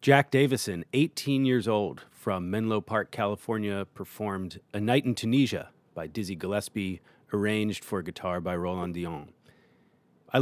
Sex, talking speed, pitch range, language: male, 140 wpm, 100-125 Hz, English